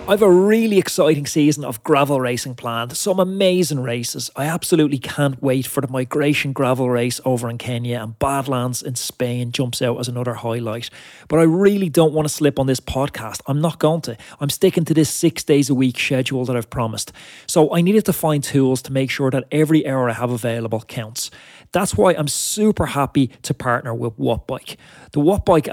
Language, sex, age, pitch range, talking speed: English, male, 30-49, 125-155 Hz, 205 wpm